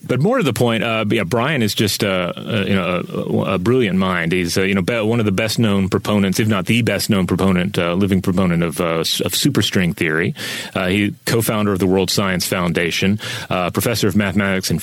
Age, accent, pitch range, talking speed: 30-49, American, 95-115 Hz, 225 wpm